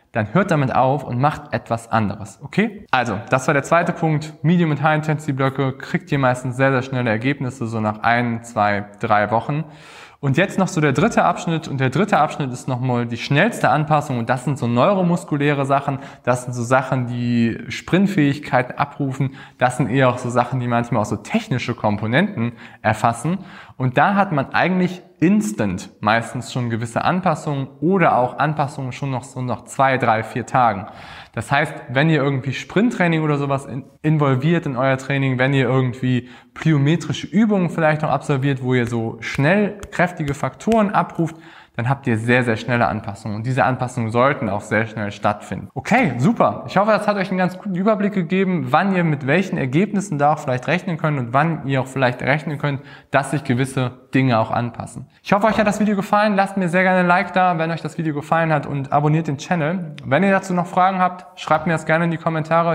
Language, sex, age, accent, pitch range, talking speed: German, male, 20-39, German, 125-165 Hz, 200 wpm